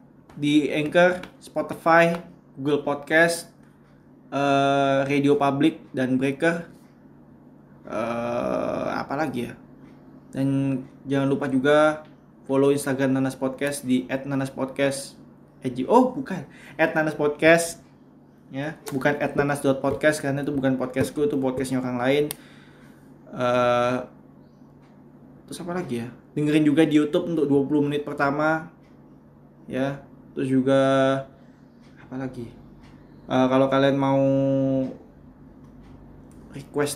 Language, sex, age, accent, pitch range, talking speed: Indonesian, male, 20-39, native, 130-150 Hz, 105 wpm